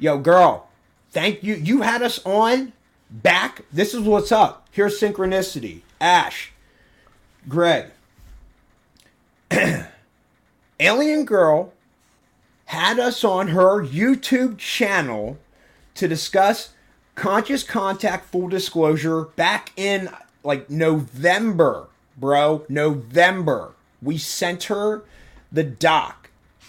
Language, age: English, 30-49